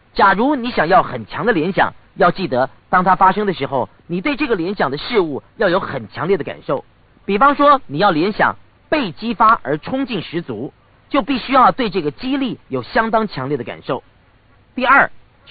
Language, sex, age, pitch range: Chinese, male, 40-59, 165-265 Hz